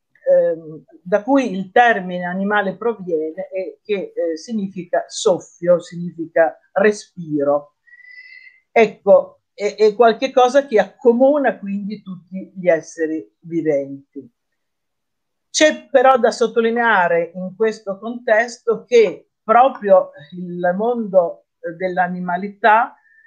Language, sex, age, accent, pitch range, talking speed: Italian, female, 50-69, native, 170-240 Hz, 95 wpm